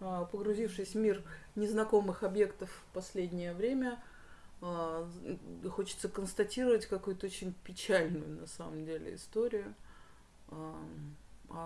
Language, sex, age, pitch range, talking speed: Russian, female, 30-49, 150-185 Hz, 95 wpm